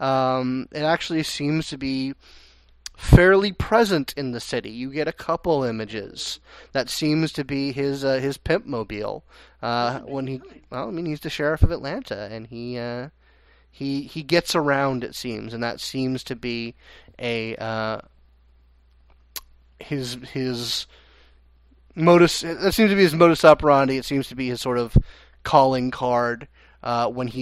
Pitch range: 115-150 Hz